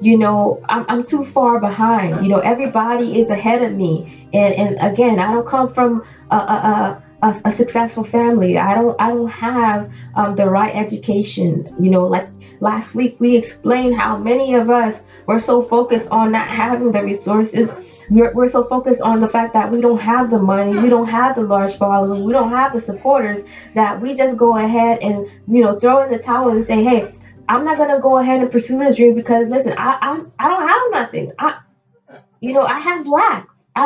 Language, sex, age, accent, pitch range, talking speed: English, female, 20-39, American, 205-245 Hz, 210 wpm